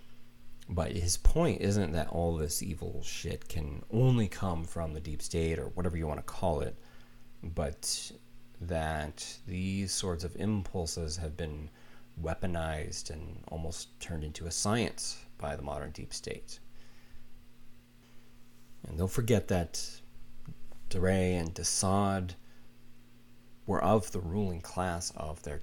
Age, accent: 30-49, American